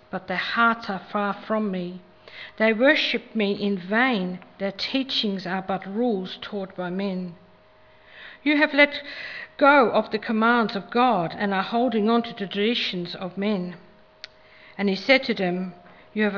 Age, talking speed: 60-79, 165 wpm